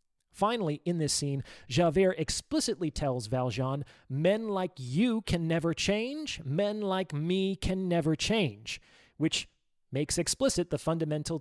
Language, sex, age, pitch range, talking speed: English, male, 30-49, 130-175 Hz, 130 wpm